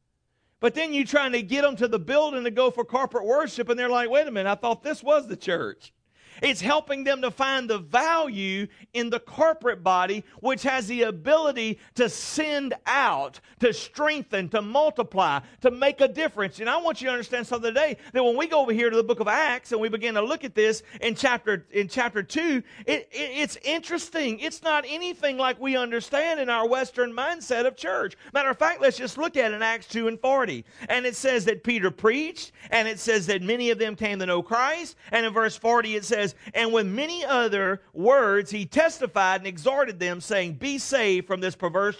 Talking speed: 215 wpm